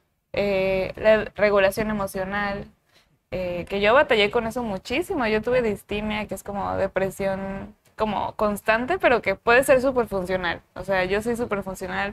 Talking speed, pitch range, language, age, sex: 160 wpm, 195-225 Hz, Spanish, 10-29, female